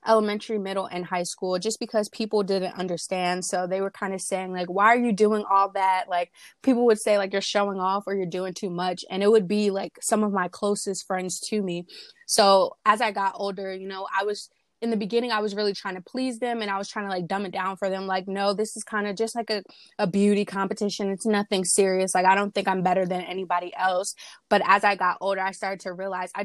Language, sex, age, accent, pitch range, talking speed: English, female, 20-39, American, 185-210 Hz, 255 wpm